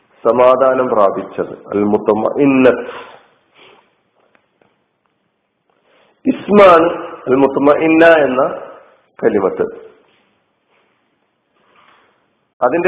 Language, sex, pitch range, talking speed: Malayalam, male, 130-175 Hz, 45 wpm